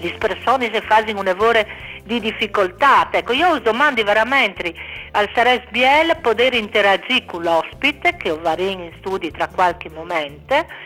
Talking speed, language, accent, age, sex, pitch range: 145 wpm, Italian, native, 50-69, female, 195-250 Hz